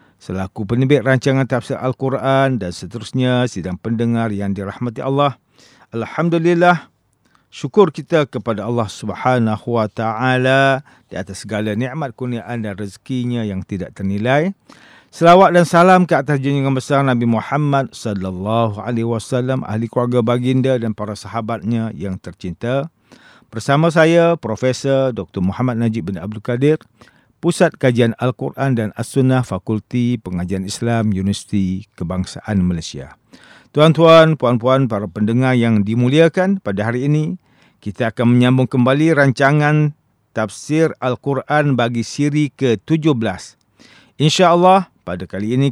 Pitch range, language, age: 110-145 Hz, English, 50-69